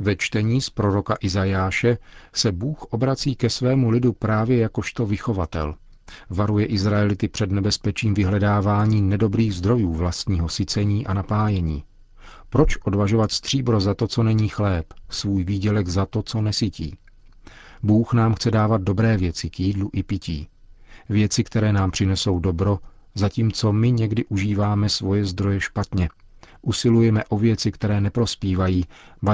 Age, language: 40-59, Czech